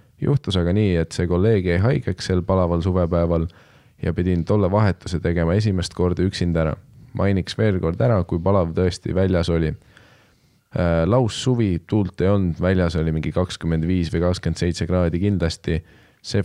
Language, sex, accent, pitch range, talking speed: English, male, Finnish, 85-100 Hz, 155 wpm